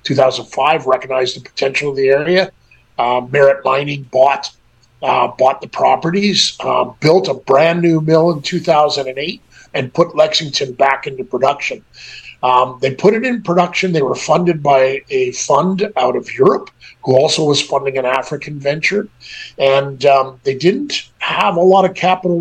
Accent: American